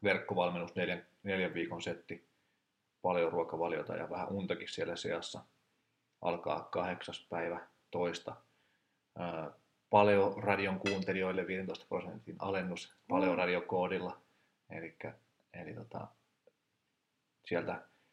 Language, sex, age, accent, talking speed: Finnish, male, 30-49, native, 85 wpm